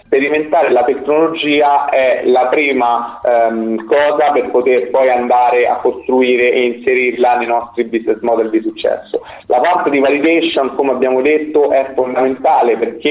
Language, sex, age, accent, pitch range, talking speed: Italian, male, 30-49, native, 120-160 Hz, 145 wpm